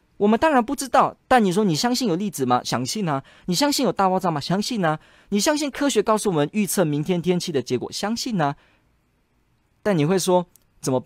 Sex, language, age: male, Chinese, 20-39